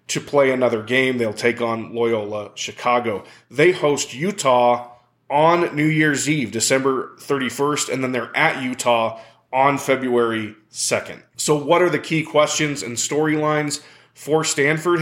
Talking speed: 145 wpm